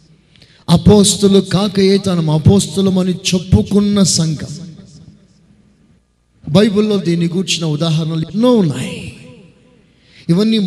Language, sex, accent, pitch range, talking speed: Telugu, male, native, 160-205 Hz, 75 wpm